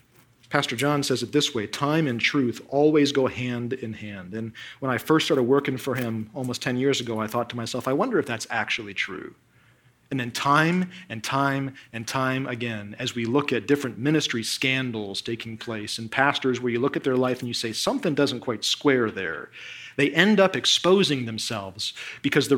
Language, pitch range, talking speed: English, 120-145 Hz, 200 wpm